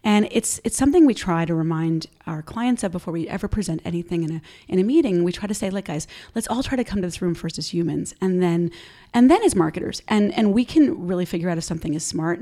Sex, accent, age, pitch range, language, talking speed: female, American, 30-49, 160-215 Hz, English, 265 wpm